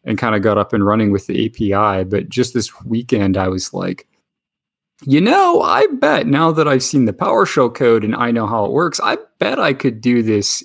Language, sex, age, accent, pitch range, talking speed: English, male, 30-49, American, 100-120 Hz, 225 wpm